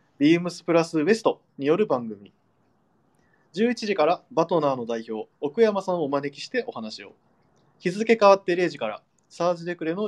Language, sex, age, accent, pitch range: Japanese, male, 20-39, native, 135-195 Hz